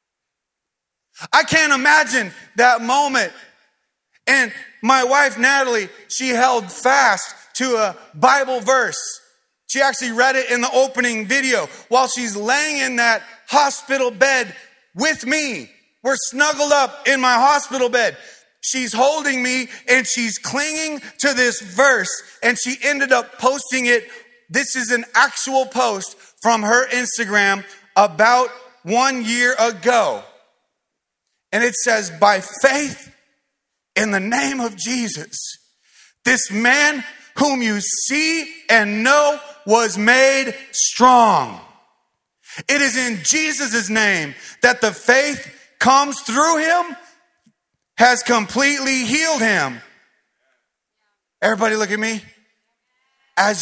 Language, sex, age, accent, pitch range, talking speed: English, male, 30-49, American, 225-275 Hz, 120 wpm